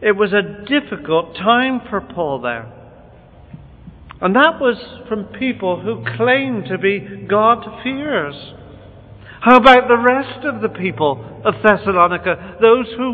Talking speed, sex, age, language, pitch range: 135 wpm, male, 50-69, English, 185-250 Hz